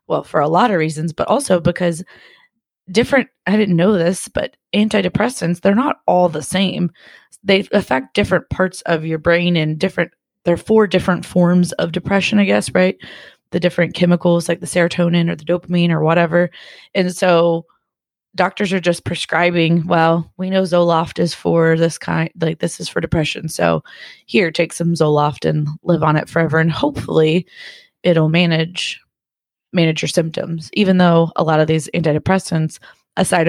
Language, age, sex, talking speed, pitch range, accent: English, 20-39, female, 170 wpm, 160-185 Hz, American